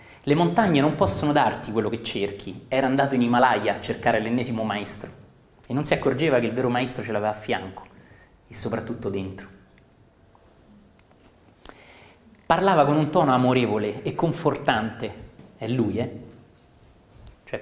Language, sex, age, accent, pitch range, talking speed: Italian, male, 30-49, native, 100-145 Hz, 145 wpm